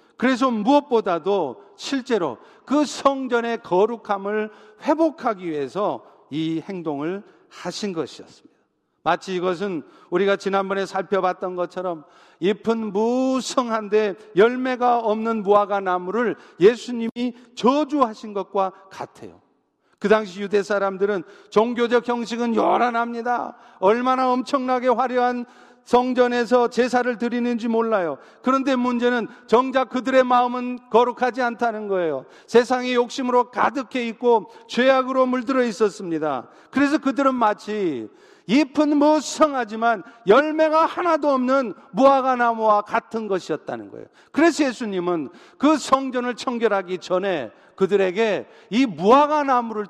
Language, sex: Korean, male